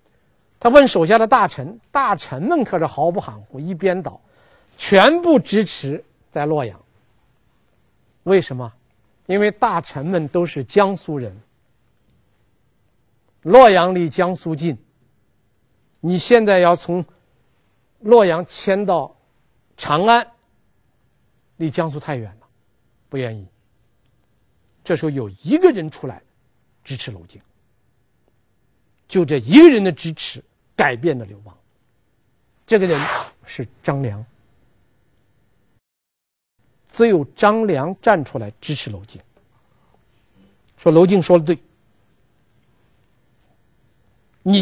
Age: 50-69